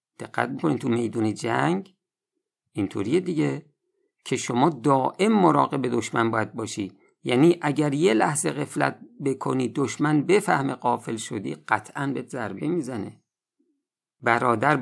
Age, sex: 50-69, male